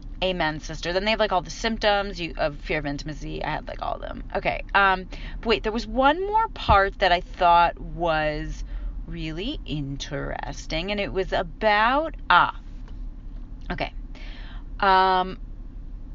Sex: female